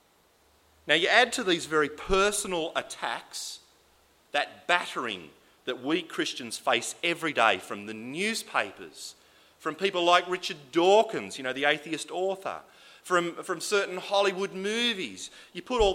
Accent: Australian